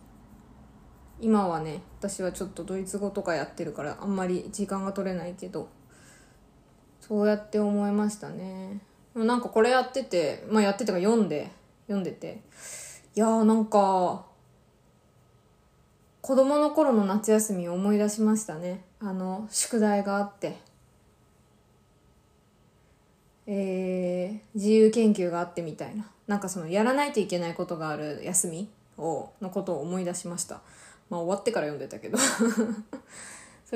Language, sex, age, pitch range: Japanese, female, 20-39, 185-220 Hz